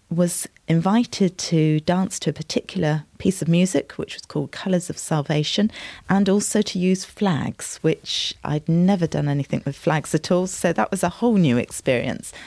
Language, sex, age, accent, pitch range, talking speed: English, female, 40-59, British, 150-185 Hz, 180 wpm